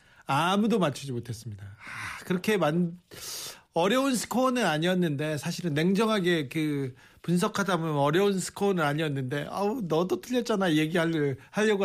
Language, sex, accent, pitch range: Korean, male, native, 140-195 Hz